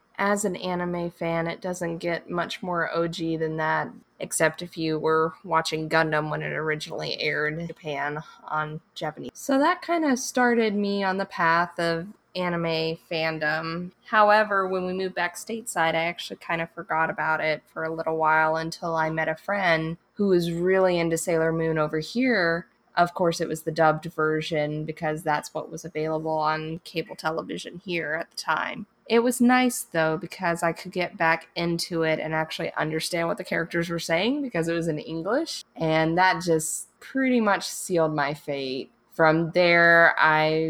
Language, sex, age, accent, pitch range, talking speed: English, female, 20-39, American, 155-175 Hz, 180 wpm